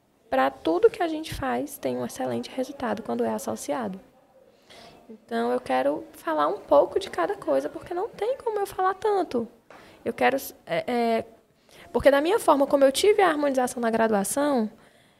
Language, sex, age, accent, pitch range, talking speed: Portuguese, female, 10-29, Brazilian, 230-315 Hz, 175 wpm